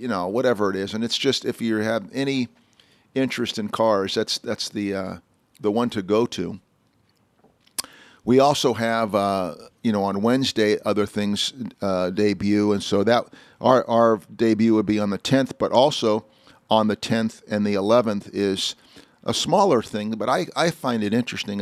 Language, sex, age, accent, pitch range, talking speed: English, male, 50-69, American, 100-115 Hz, 180 wpm